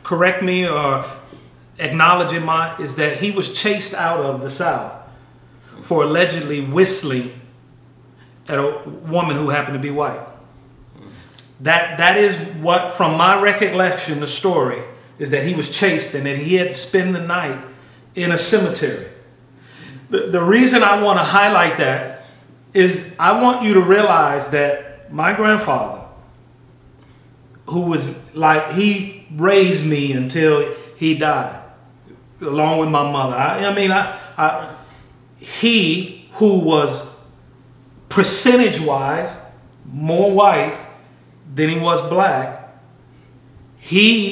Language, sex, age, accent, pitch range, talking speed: English, male, 30-49, American, 135-190 Hz, 135 wpm